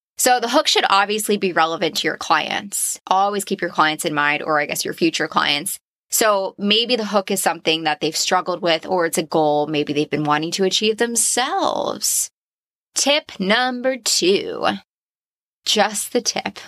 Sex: female